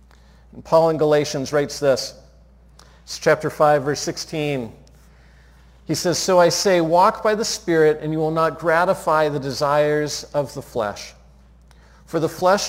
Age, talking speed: 50-69, 150 wpm